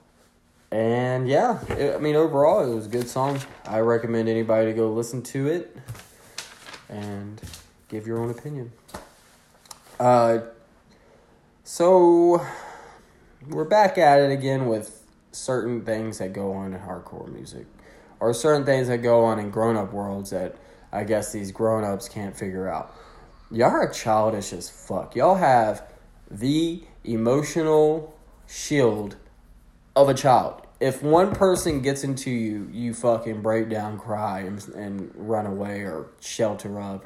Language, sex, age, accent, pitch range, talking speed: English, male, 20-39, American, 110-140 Hz, 140 wpm